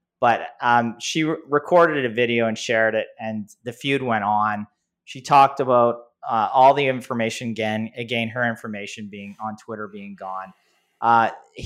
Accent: American